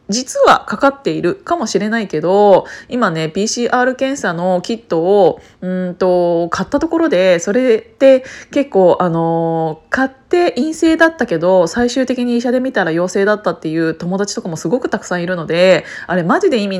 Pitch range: 180-245 Hz